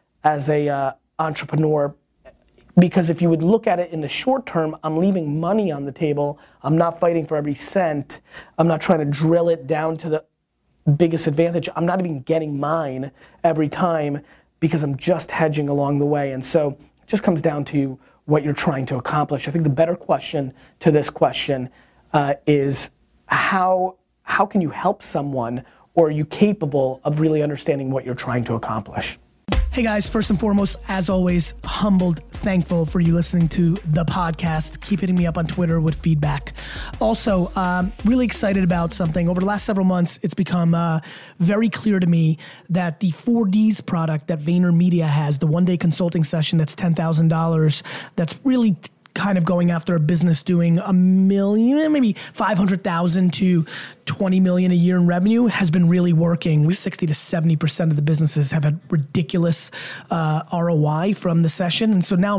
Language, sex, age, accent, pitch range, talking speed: English, male, 30-49, American, 155-185 Hz, 180 wpm